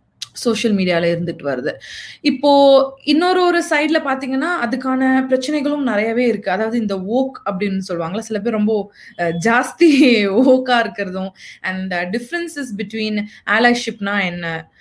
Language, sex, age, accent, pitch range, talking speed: Tamil, female, 20-39, native, 195-260 Hz, 120 wpm